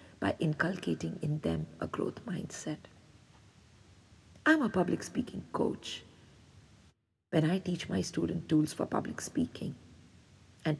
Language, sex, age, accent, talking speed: English, female, 50-69, Indian, 120 wpm